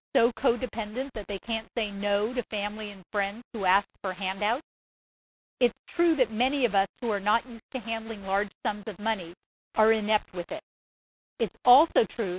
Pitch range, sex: 195-250 Hz, female